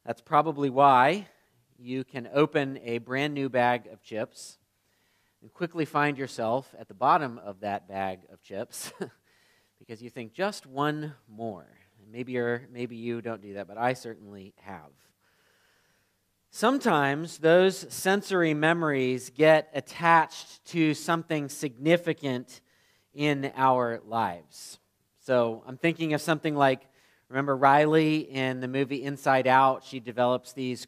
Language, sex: English, male